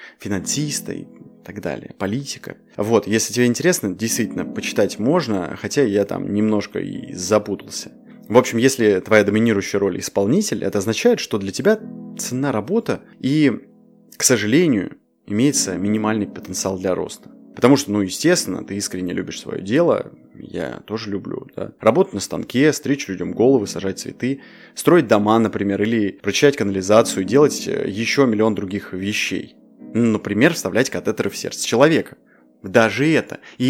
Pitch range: 100-130 Hz